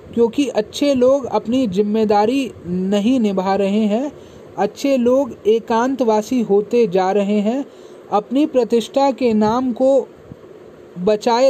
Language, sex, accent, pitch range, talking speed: Hindi, male, native, 215-260 Hz, 115 wpm